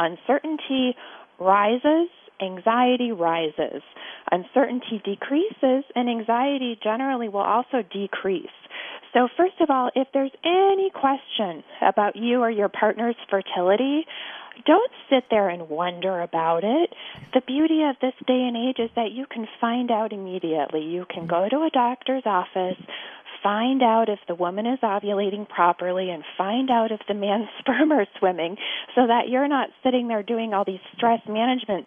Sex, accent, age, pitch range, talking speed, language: female, American, 30-49, 190-255 Hz, 155 wpm, English